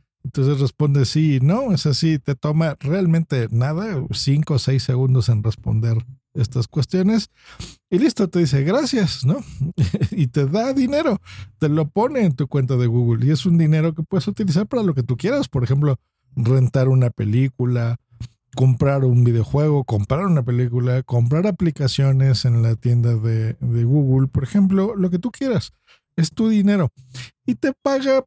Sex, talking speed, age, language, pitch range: male, 170 wpm, 50-69, Spanish, 125-170 Hz